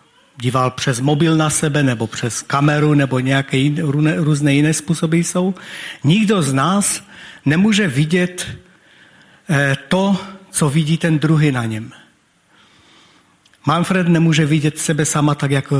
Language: Czech